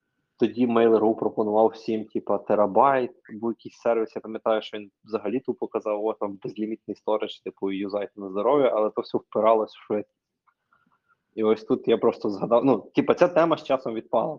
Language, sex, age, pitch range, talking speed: Ukrainian, male, 20-39, 105-115 Hz, 170 wpm